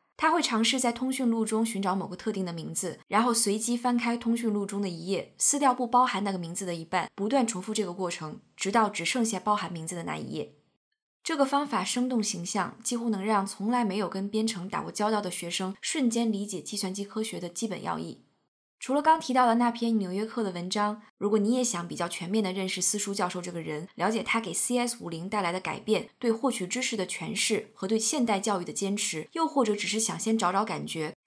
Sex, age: female, 20-39